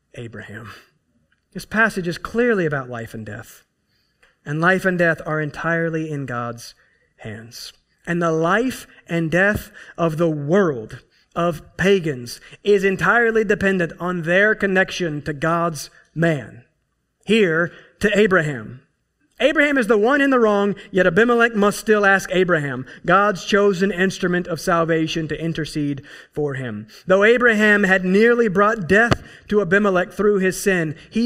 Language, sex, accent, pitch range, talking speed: English, male, American, 150-200 Hz, 140 wpm